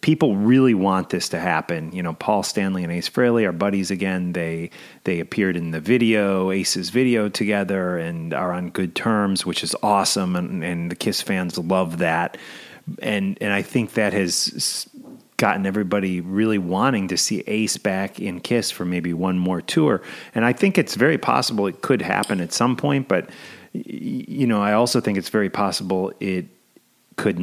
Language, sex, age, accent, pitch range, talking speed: English, male, 30-49, American, 90-115 Hz, 185 wpm